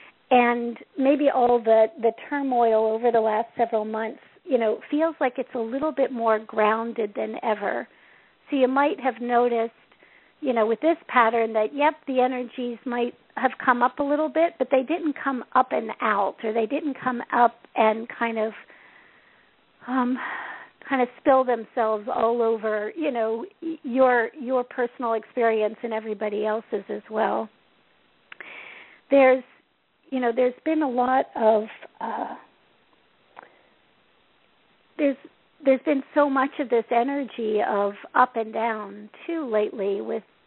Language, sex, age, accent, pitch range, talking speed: English, female, 50-69, American, 220-255 Hz, 150 wpm